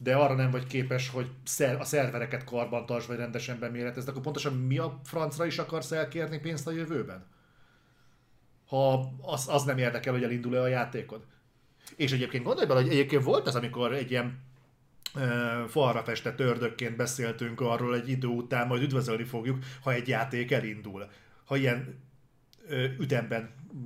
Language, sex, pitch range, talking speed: Hungarian, male, 120-150 Hz, 160 wpm